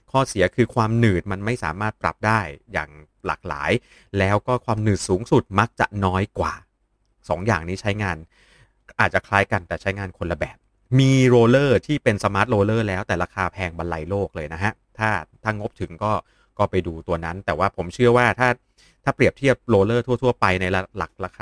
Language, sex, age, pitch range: Thai, male, 30-49, 90-115 Hz